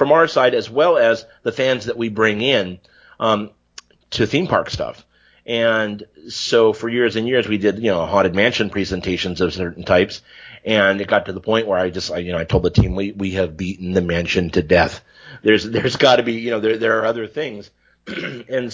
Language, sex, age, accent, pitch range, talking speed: English, male, 40-59, American, 95-115 Hz, 225 wpm